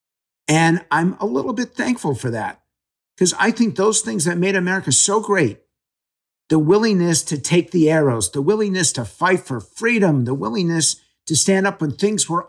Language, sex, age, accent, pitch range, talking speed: English, male, 50-69, American, 115-170 Hz, 185 wpm